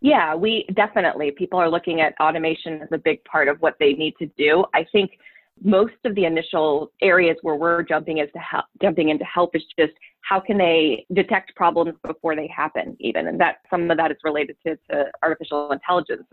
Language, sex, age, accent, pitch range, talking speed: English, female, 20-39, American, 155-185 Hz, 205 wpm